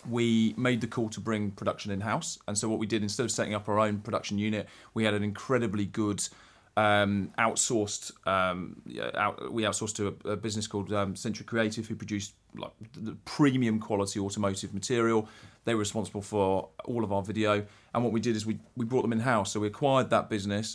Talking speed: 200 wpm